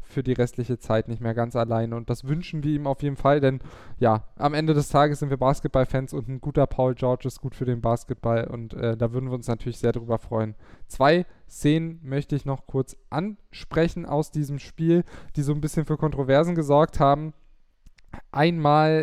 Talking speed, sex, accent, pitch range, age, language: 200 wpm, male, German, 130-150 Hz, 10-29, German